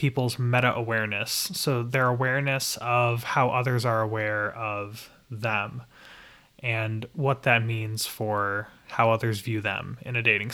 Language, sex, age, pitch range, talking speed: English, male, 20-39, 115-130 Hz, 135 wpm